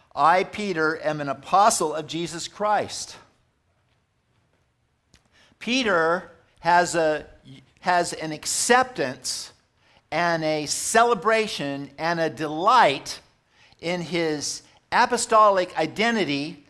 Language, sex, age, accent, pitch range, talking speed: English, male, 50-69, American, 150-195 Hz, 85 wpm